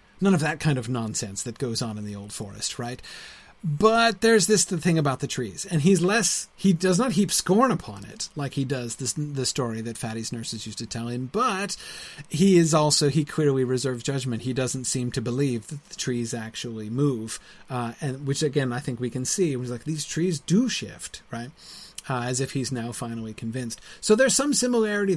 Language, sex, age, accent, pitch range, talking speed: English, male, 30-49, American, 120-160 Hz, 215 wpm